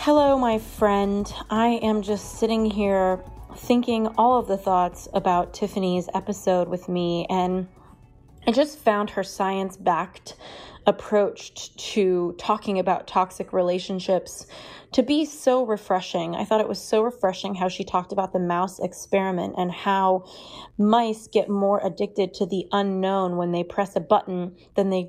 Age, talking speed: 30-49, 150 wpm